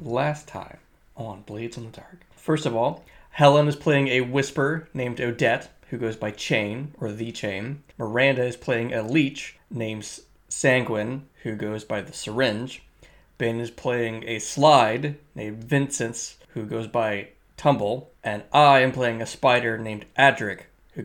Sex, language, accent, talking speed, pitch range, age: male, English, American, 160 wpm, 115-145 Hz, 20-39